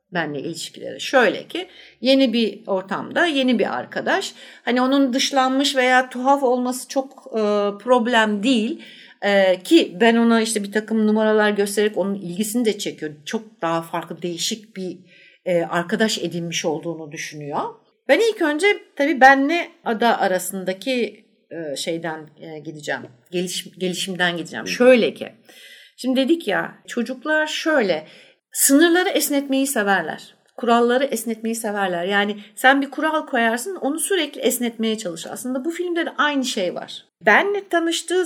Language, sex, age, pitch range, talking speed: Turkish, female, 60-79, 195-280 Hz, 140 wpm